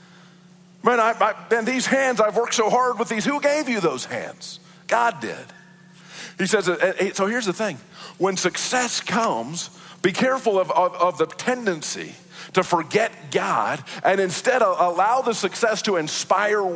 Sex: male